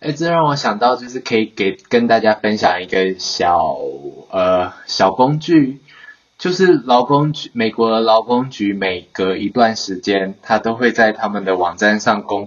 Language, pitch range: Chinese, 95-120 Hz